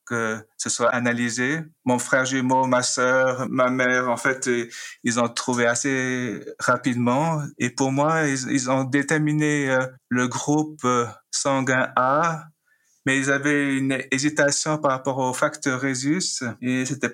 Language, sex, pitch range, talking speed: French, male, 115-130 Hz, 145 wpm